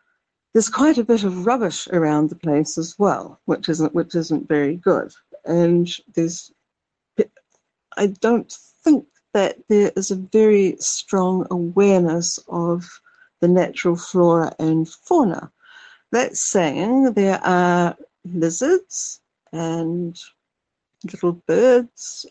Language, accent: English, British